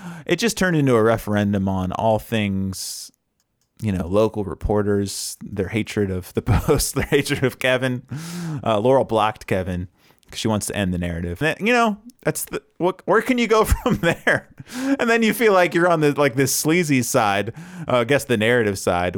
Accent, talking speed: American, 200 wpm